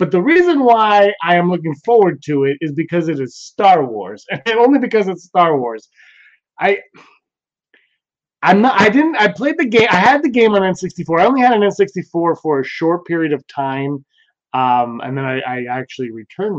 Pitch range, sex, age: 135-195 Hz, male, 20-39